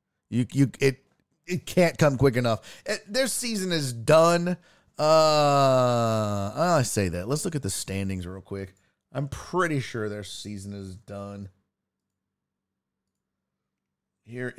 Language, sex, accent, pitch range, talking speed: English, male, American, 100-150 Hz, 130 wpm